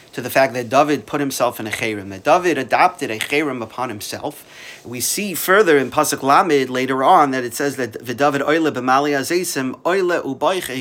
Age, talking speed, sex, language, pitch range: 40-59, 195 wpm, male, English, 130-165 Hz